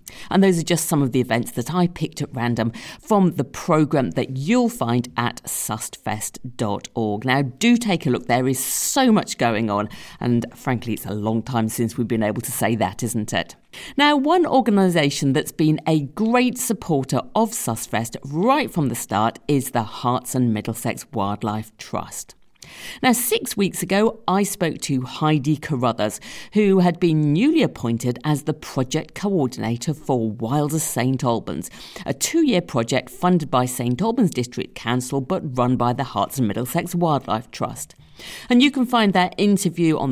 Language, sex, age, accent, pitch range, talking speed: English, female, 50-69, British, 120-185 Hz, 170 wpm